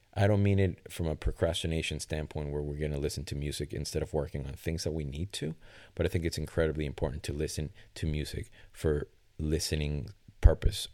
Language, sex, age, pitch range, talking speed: English, male, 30-49, 75-95 Hz, 205 wpm